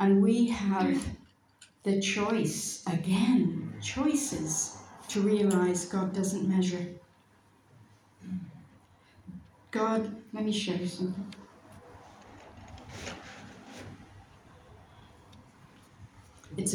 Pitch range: 150-195 Hz